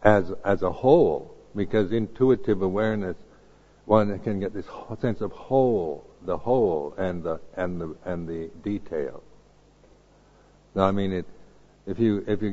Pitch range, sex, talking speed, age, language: 85-110 Hz, male, 150 wpm, 60-79, English